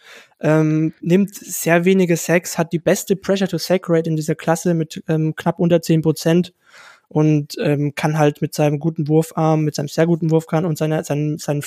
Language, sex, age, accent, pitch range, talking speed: German, male, 20-39, German, 160-175 Hz, 170 wpm